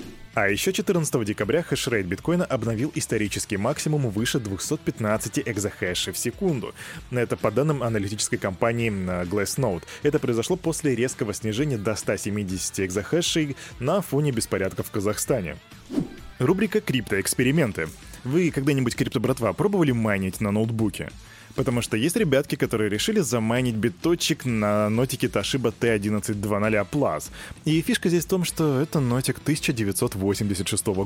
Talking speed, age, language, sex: 125 wpm, 20-39, Russian, male